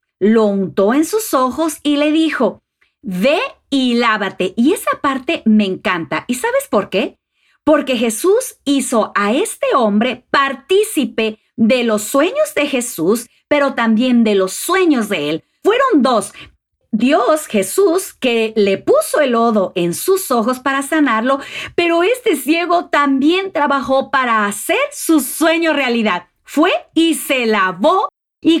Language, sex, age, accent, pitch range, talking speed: Spanish, female, 40-59, Mexican, 225-320 Hz, 145 wpm